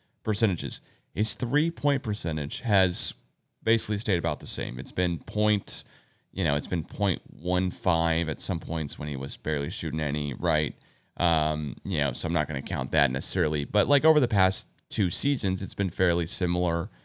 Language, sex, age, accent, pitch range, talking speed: English, male, 30-49, American, 80-115 Hz, 175 wpm